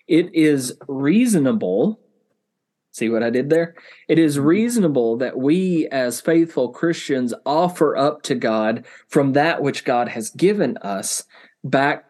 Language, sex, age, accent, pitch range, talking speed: English, male, 30-49, American, 120-160 Hz, 140 wpm